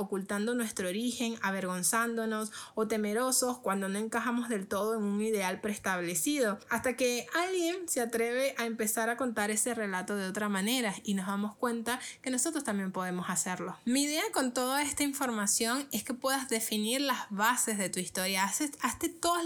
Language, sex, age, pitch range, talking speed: Spanish, female, 20-39, 215-260 Hz, 170 wpm